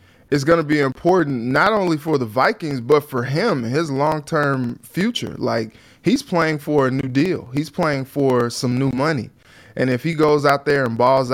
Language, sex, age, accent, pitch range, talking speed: English, male, 20-39, American, 120-145 Hz, 195 wpm